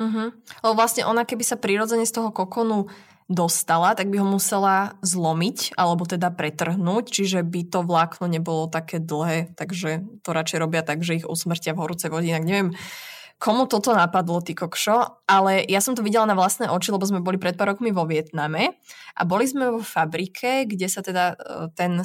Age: 20-39